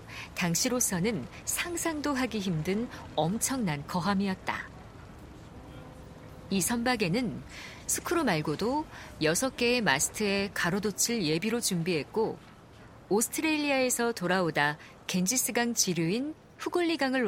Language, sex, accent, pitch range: Korean, female, native, 180-260 Hz